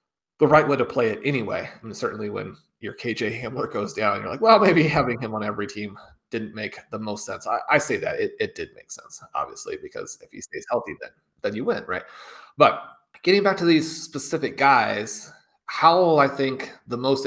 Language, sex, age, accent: English, male, 30-49, American